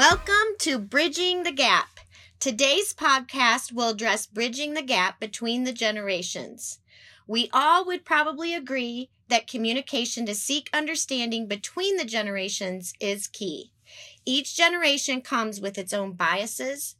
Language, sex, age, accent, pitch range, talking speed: English, female, 30-49, American, 210-280 Hz, 130 wpm